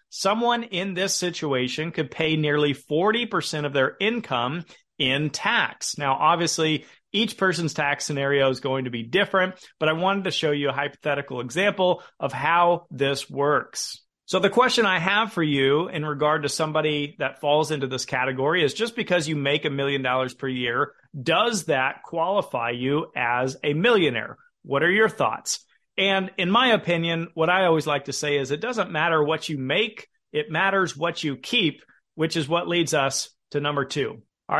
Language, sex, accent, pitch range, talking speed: English, male, American, 140-175 Hz, 180 wpm